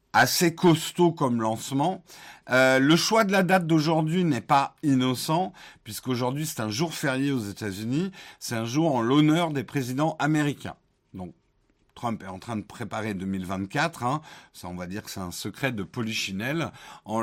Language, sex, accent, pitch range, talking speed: French, male, French, 115-165 Hz, 170 wpm